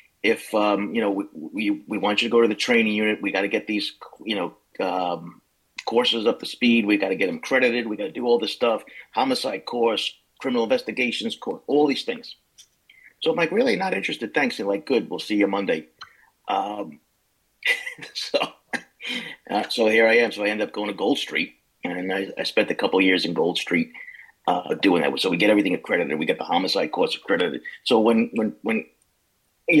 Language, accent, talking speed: English, American, 215 wpm